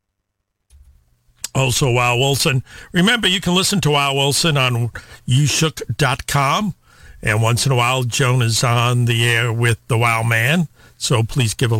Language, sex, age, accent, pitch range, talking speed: English, male, 50-69, American, 125-155 Hz, 155 wpm